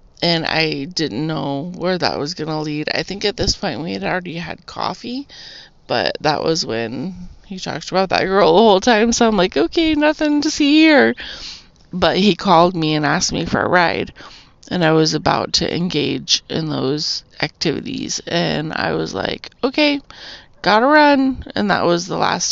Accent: American